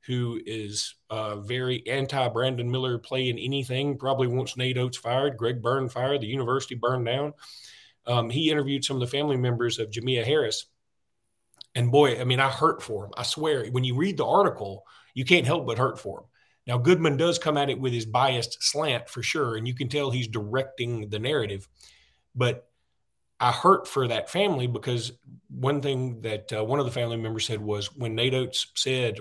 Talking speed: 200 wpm